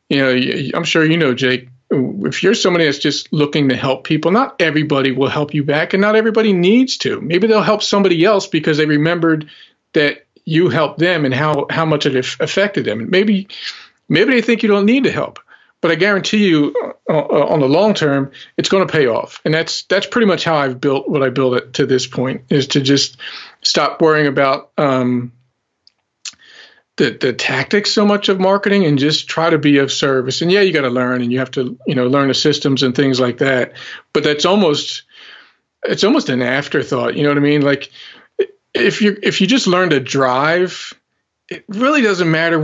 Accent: American